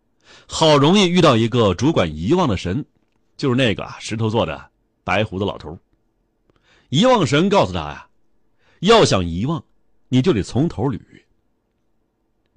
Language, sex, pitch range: Chinese, male, 110-135 Hz